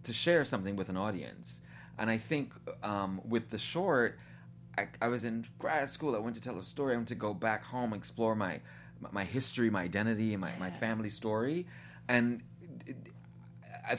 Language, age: English, 30-49